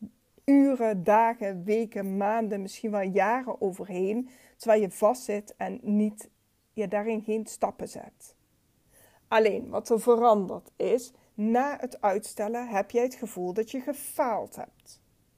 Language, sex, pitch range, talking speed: Dutch, female, 200-235 Hz, 135 wpm